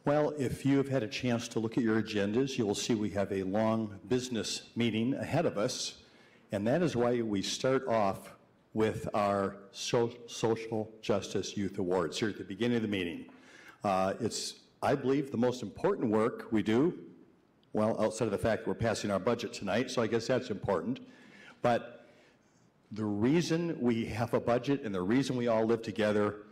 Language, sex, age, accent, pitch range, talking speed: English, male, 60-79, American, 105-130 Hz, 190 wpm